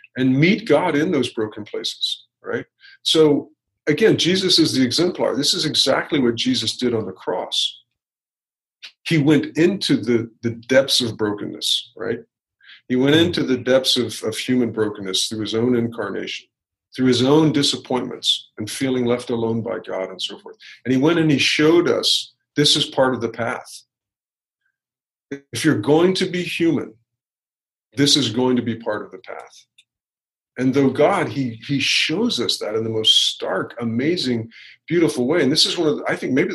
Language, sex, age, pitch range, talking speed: English, male, 50-69, 115-145 Hz, 180 wpm